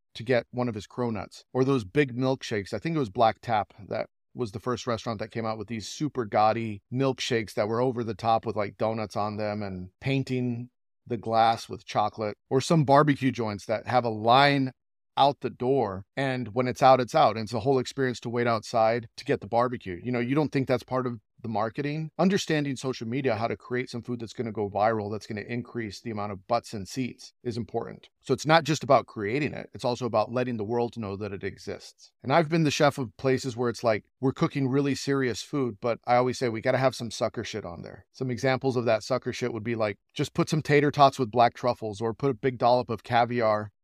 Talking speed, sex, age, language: 245 wpm, male, 30-49, English